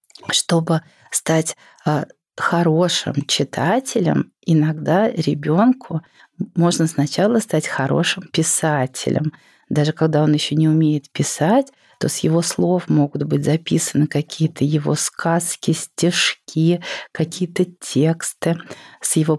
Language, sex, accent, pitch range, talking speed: Russian, female, native, 150-175 Hz, 100 wpm